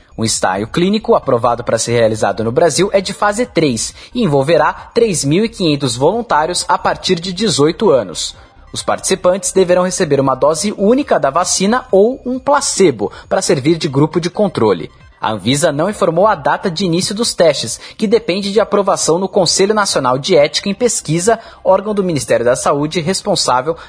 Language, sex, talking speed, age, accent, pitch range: Portuguese, male, 170 wpm, 20-39, Brazilian, 145-210 Hz